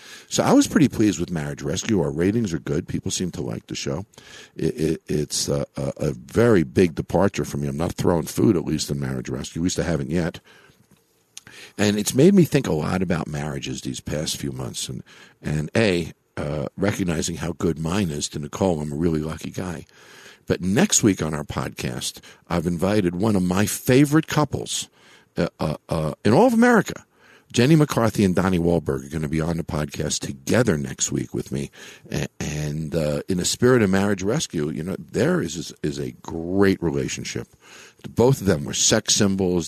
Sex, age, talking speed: male, 50-69, 195 wpm